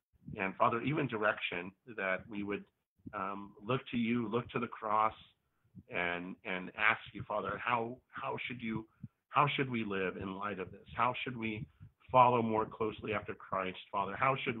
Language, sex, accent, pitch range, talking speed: English, male, American, 100-115 Hz, 175 wpm